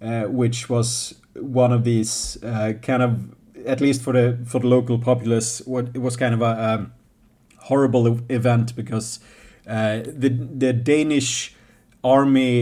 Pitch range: 115-130 Hz